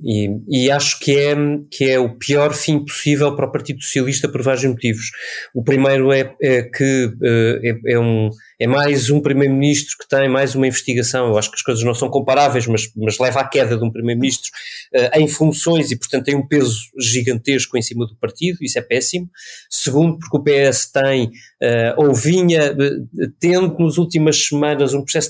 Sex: male